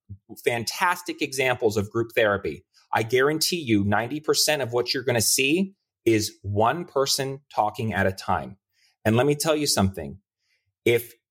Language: English